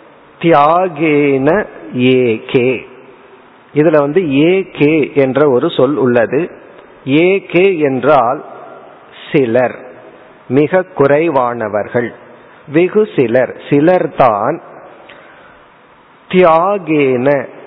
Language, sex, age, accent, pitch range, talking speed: Tamil, male, 50-69, native, 135-180 Hz, 60 wpm